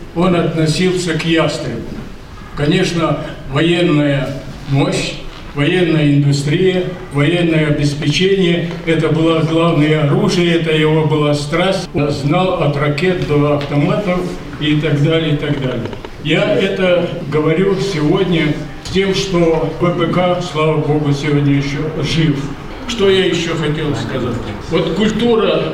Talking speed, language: 115 wpm, Russian